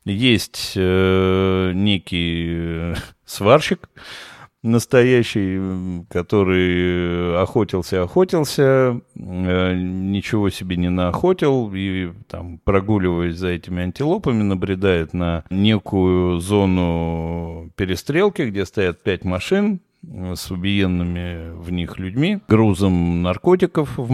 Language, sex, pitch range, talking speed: Russian, male, 90-120 Hz, 85 wpm